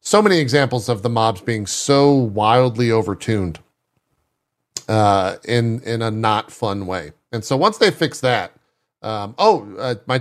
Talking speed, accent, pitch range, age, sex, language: 160 wpm, American, 105-145 Hz, 40-59, male, English